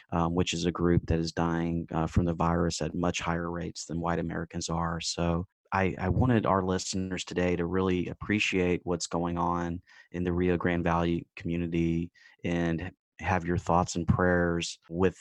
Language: English